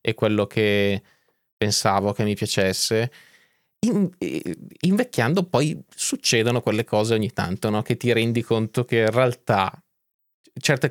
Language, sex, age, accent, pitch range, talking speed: Italian, male, 20-39, native, 105-125 Hz, 125 wpm